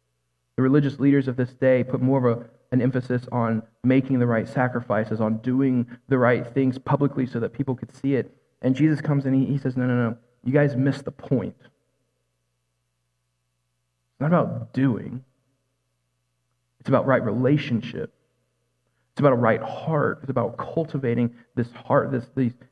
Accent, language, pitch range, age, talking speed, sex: American, English, 105-140 Hz, 40-59, 170 wpm, male